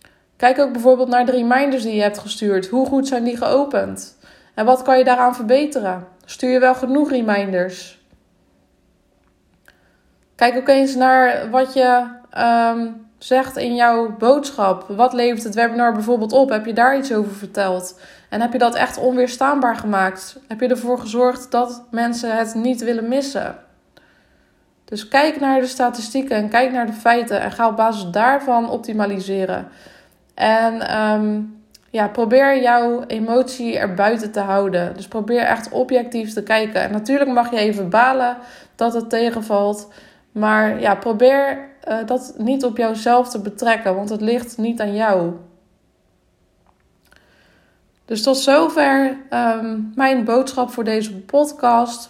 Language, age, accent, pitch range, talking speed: Dutch, 20-39, Dutch, 215-255 Hz, 150 wpm